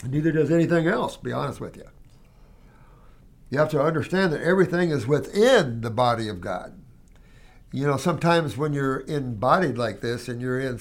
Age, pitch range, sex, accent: 60-79, 135-175 Hz, male, American